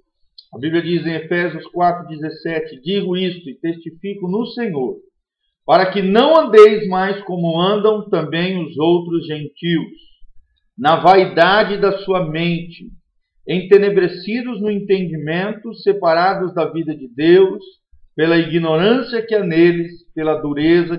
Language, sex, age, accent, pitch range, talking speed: Portuguese, male, 50-69, Brazilian, 155-195 Hz, 125 wpm